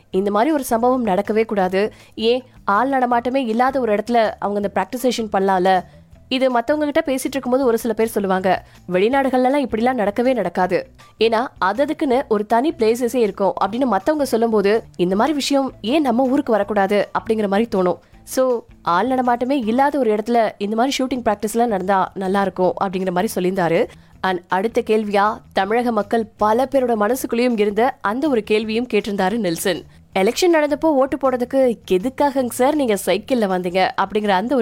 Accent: native